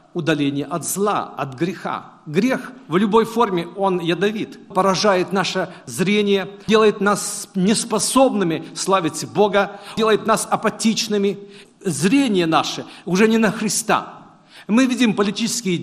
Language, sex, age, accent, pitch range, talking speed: Russian, male, 50-69, native, 180-220 Hz, 120 wpm